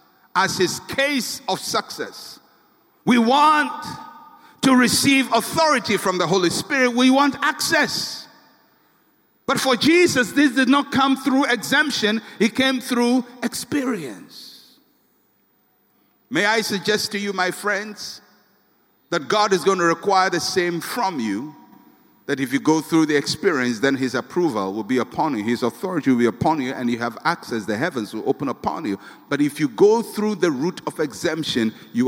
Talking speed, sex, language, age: 165 wpm, male, English, 50-69